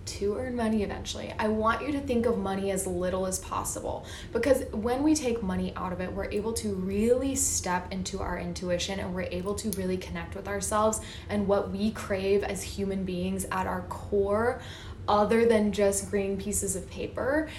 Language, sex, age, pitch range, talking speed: English, female, 20-39, 185-230 Hz, 190 wpm